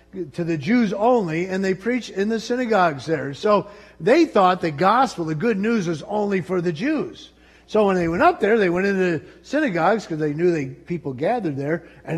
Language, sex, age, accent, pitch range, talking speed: English, male, 50-69, American, 145-195 Hz, 210 wpm